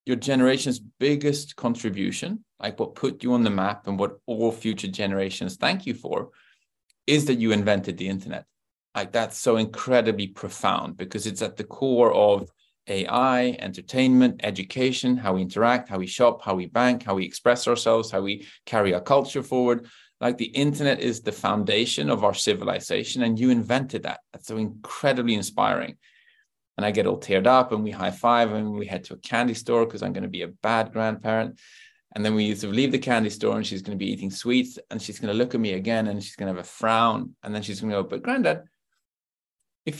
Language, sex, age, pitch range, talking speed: English, male, 30-49, 100-125 Hz, 215 wpm